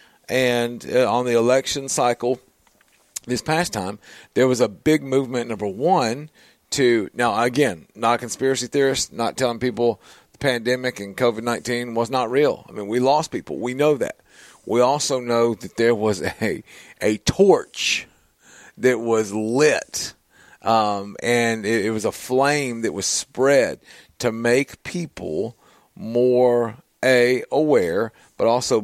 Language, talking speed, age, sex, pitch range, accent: English, 150 wpm, 40-59, male, 115-130 Hz, American